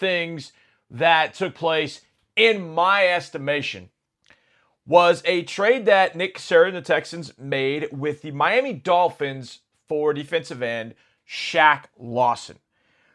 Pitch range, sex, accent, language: 130-170 Hz, male, American, English